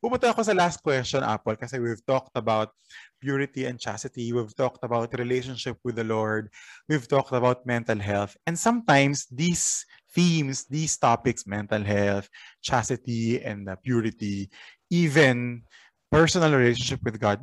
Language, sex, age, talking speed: Filipino, male, 20-39, 140 wpm